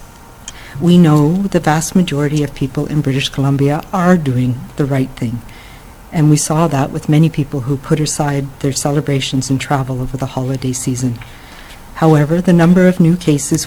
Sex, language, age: female, English, 50-69